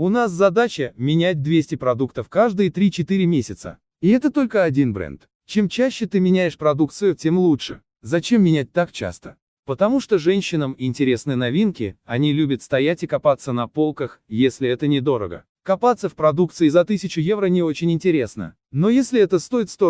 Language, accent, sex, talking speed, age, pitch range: Russian, native, male, 165 wpm, 30-49, 140-200 Hz